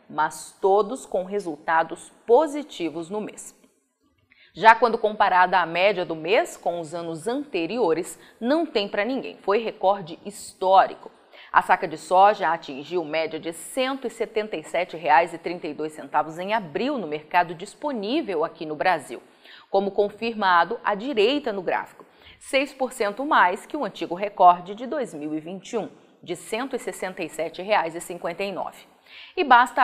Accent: Brazilian